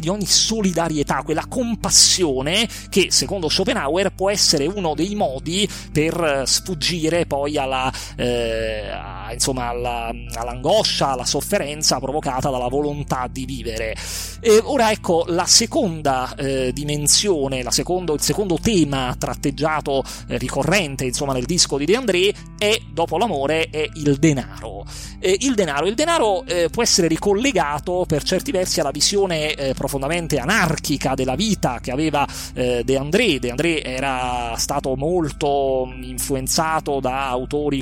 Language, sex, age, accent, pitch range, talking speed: Italian, male, 30-49, native, 135-180 Hz, 140 wpm